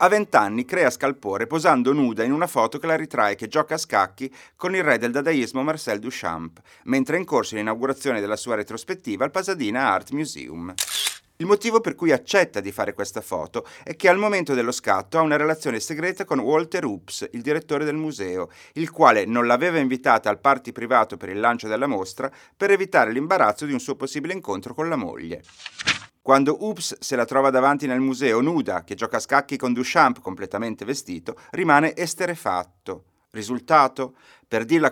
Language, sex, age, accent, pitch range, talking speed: Italian, male, 30-49, native, 115-155 Hz, 185 wpm